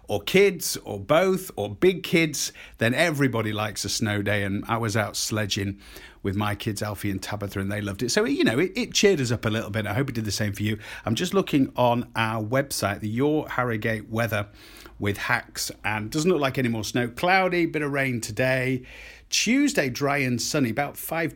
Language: English